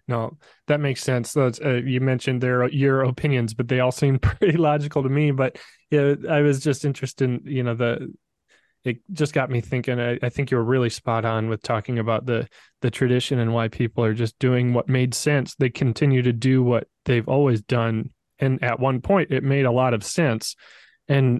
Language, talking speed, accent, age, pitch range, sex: English, 220 wpm, American, 20-39, 120-140 Hz, male